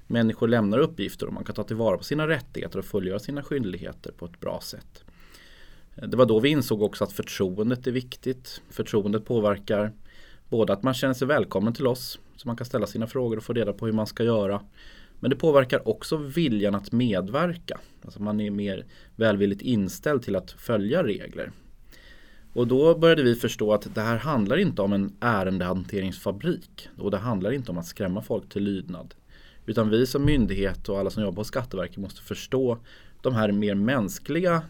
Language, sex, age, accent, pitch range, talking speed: Swedish, male, 30-49, native, 100-130 Hz, 190 wpm